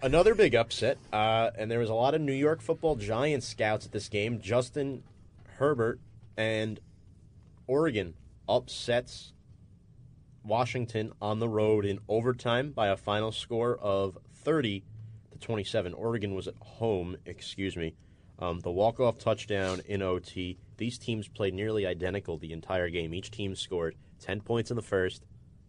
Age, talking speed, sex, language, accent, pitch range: 30-49, 145 wpm, male, English, American, 95-115 Hz